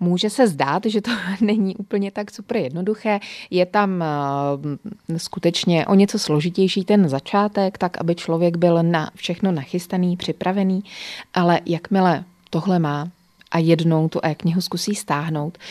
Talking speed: 140 wpm